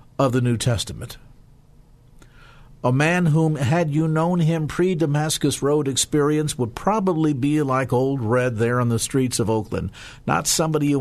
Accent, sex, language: American, male, English